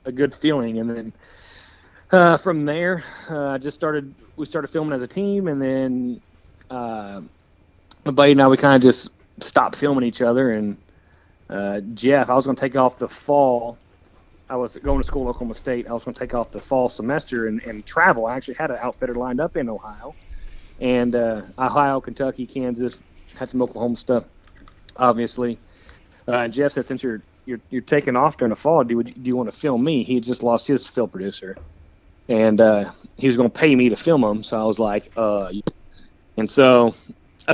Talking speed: 205 wpm